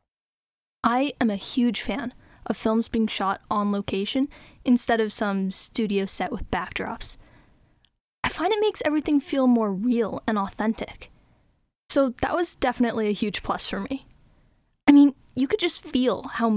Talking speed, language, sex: 160 wpm, English, female